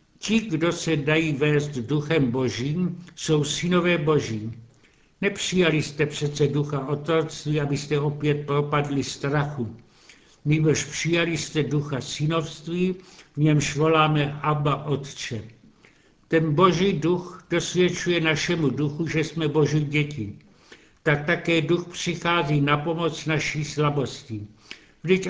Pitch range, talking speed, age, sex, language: 145-170 Hz, 115 wpm, 70-89, male, Czech